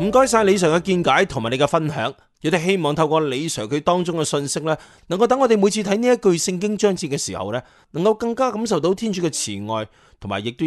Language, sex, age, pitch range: Chinese, male, 30-49, 140-210 Hz